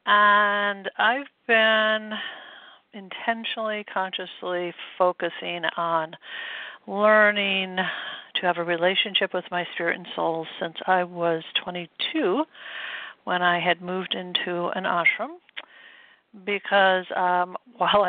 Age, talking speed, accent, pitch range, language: 60-79, 105 wpm, American, 175-215 Hz, English